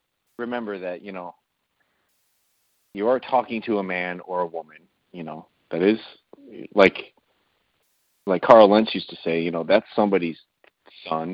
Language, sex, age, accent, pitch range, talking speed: English, male, 30-49, American, 90-120 Hz, 155 wpm